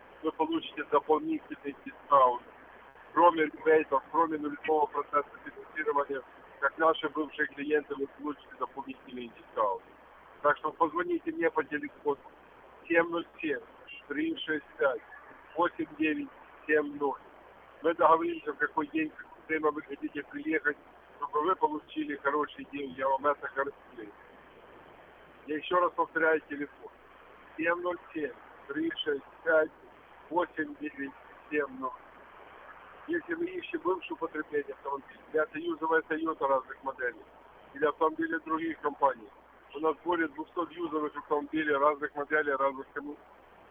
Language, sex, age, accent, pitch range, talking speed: Russian, male, 50-69, native, 145-180 Hz, 105 wpm